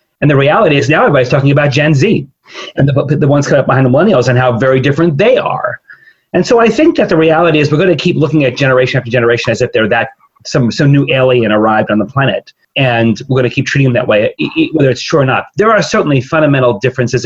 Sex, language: male, English